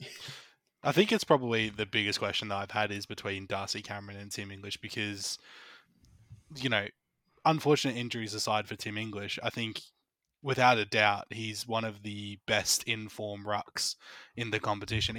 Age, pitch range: 20-39, 100-115 Hz